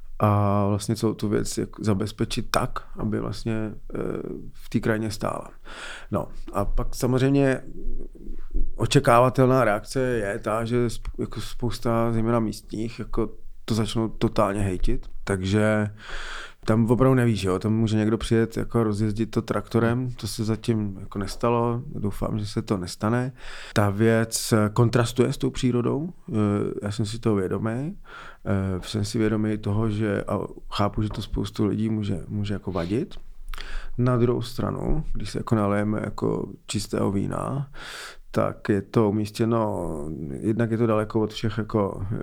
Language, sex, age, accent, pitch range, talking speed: Czech, male, 30-49, native, 105-115 Hz, 140 wpm